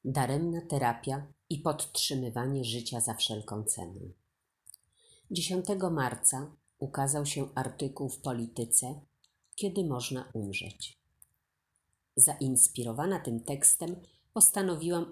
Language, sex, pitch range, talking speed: Polish, female, 115-155 Hz, 85 wpm